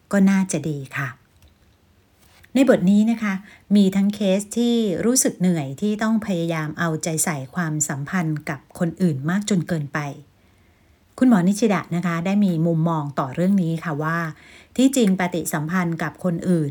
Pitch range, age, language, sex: 155-195 Hz, 60-79, Thai, female